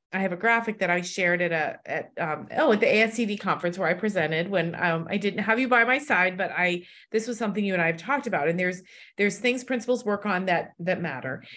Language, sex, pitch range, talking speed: English, female, 175-215 Hz, 255 wpm